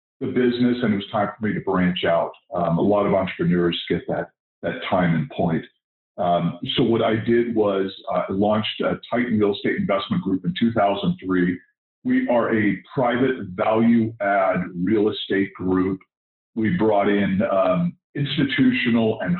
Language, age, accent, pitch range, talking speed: English, 50-69, American, 100-130 Hz, 165 wpm